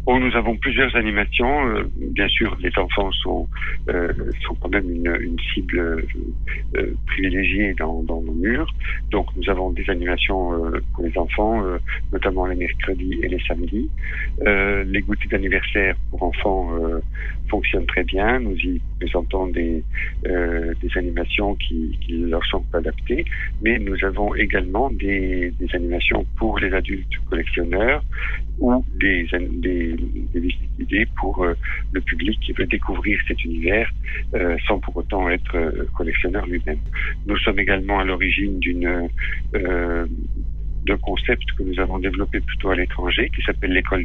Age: 50-69